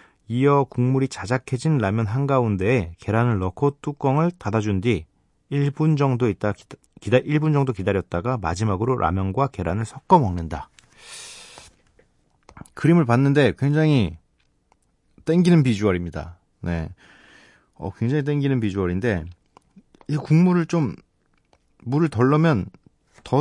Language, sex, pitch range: Korean, male, 100-140 Hz